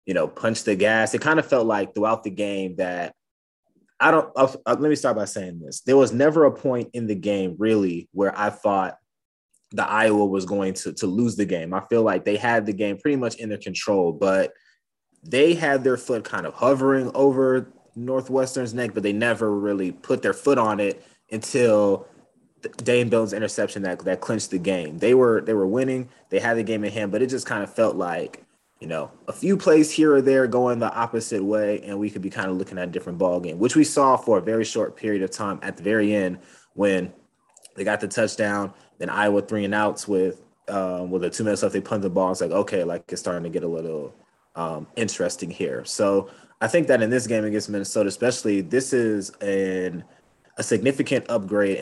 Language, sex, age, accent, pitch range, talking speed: English, male, 20-39, American, 95-120 Hz, 220 wpm